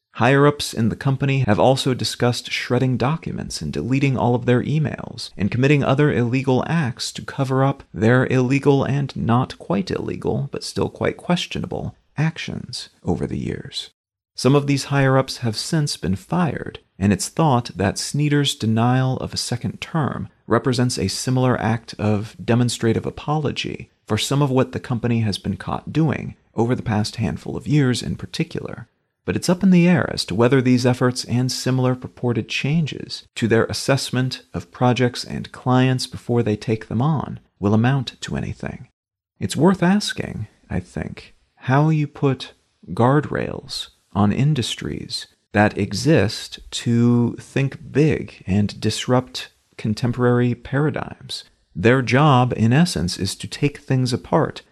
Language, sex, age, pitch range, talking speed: English, male, 40-59, 110-140 Hz, 150 wpm